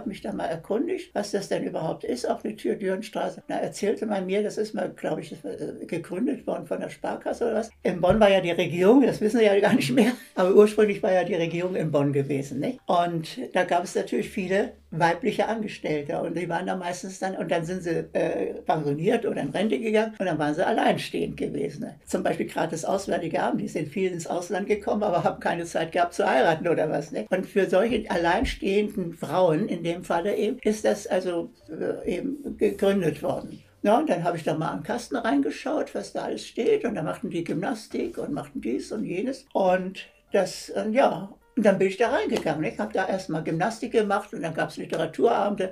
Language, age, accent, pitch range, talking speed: German, 60-79, German, 175-215 Hz, 220 wpm